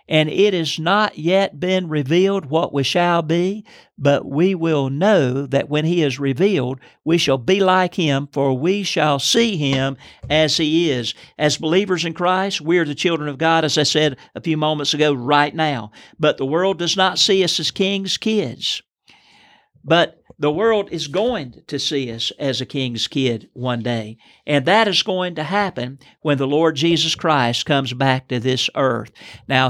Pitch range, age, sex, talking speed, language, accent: 140-180 Hz, 50-69, male, 190 wpm, English, American